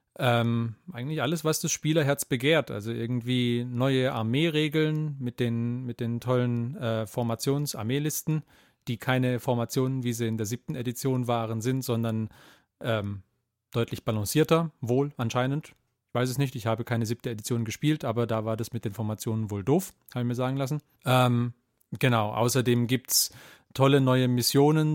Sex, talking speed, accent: male, 160 wpm, German